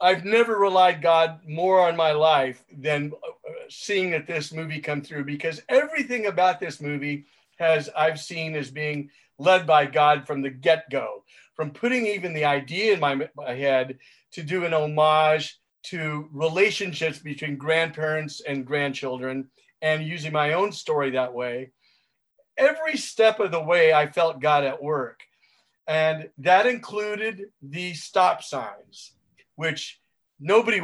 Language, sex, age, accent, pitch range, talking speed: English, male, 40-59, American, 150-195 Hz, 150 wpm